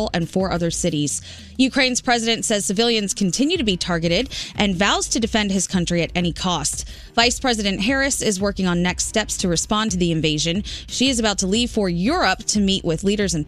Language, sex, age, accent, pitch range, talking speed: English, female, 20-39, American, 180-245 Hz, 205 wpm